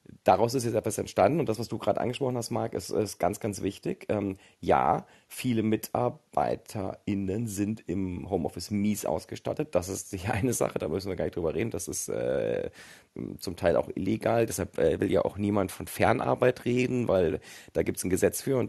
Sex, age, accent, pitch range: male, 30-49, German, 95-120 Hz